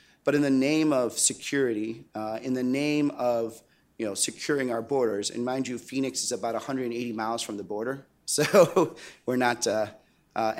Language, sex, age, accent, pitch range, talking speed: English, male, 30-49, American, 110-130 Hz, 180 wpm